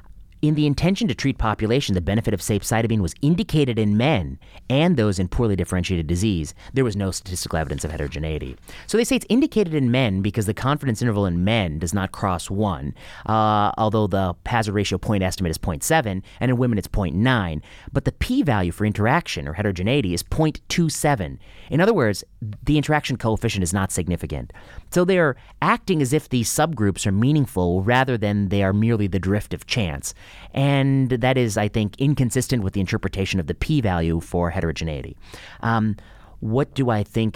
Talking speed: 180 wpm